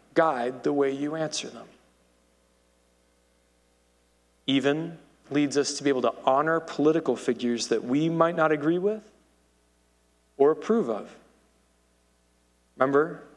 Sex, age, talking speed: male, 30-49, 115 wpm